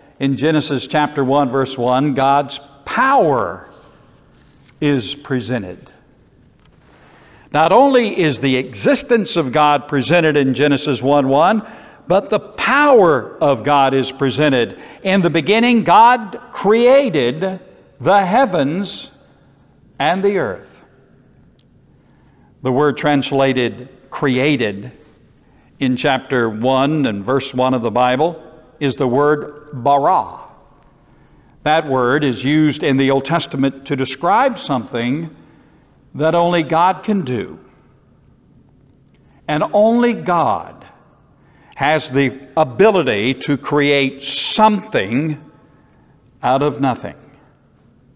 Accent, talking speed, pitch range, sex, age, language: American, 105 wpm, 135-175 Hz, male, 60-79, English